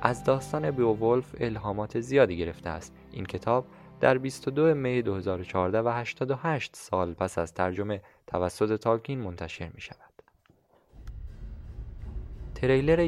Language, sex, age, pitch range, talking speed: Persian, male, 20-39, 90-125 Hz, 115 wpm